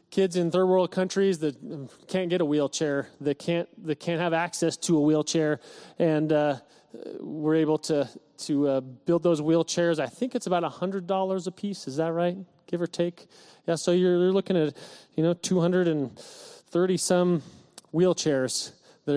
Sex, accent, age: male, American, 30-49